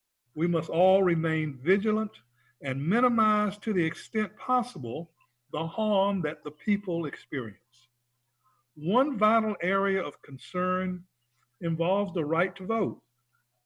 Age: 60-79